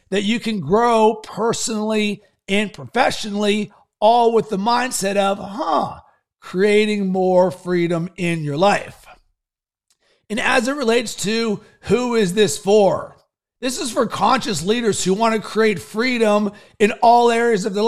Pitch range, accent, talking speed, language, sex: 200-235 Hz, American, 145 wpm, English, male